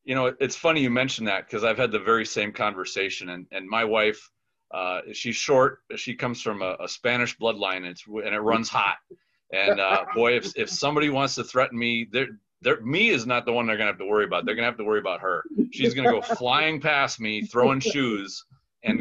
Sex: male